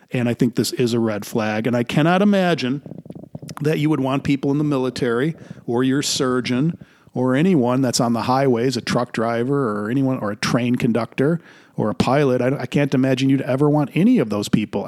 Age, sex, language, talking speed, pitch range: 40-59, male, English, 210 wpm, 115-145 Hz